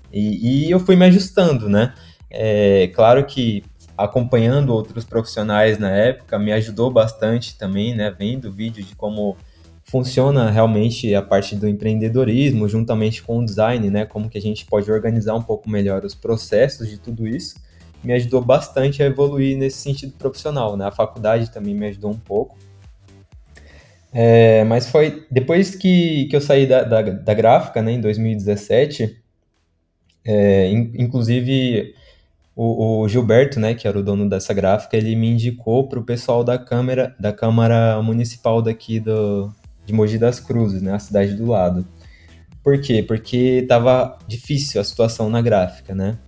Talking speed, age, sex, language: 160 wpm, 20-39, male, Portuguese